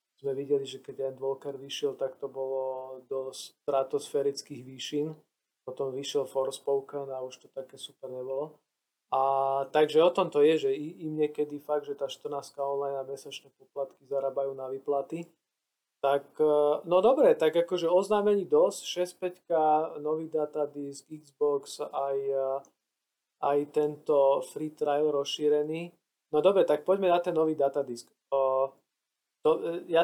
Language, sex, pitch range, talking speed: Slovak, male, 135-165 Hz, 140 wpm